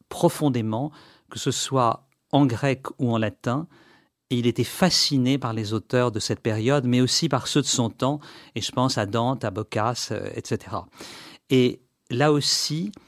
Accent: French